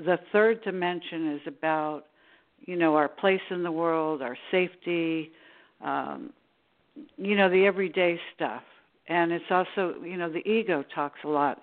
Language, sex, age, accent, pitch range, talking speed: English, female, 60-79, American, 155-185 Hz, 155 wpm